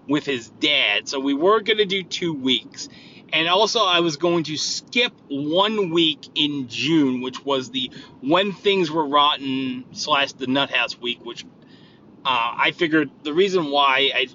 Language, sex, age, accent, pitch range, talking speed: English, male, 30-49, American, 125-175 Hz, 170 wpm